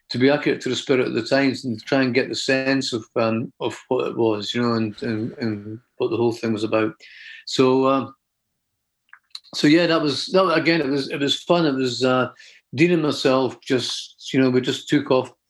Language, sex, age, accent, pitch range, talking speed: English, male, 50-69, British, 115-130 Hz, 230 wpm